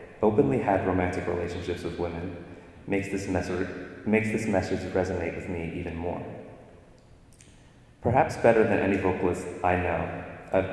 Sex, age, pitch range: male, 30-49, 85-100 Hz